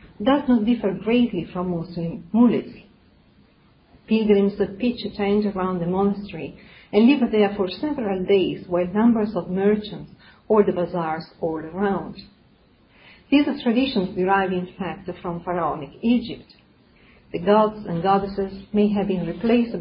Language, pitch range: English, 180-220 Hz